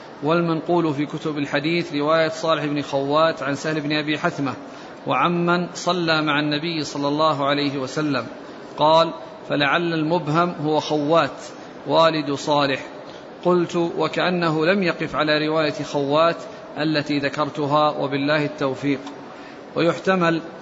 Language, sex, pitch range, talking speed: Arabic, male, 150-165 Hz, 115 wpm